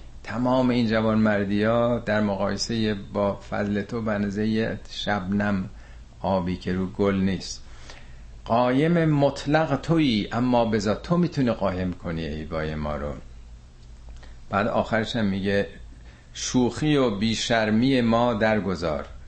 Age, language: 50-69, Persian